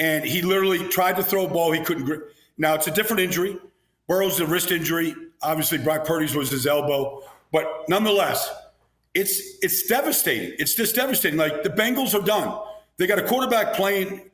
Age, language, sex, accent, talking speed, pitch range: 50-69, English, male, American, 185 wpm, 165-210 Hz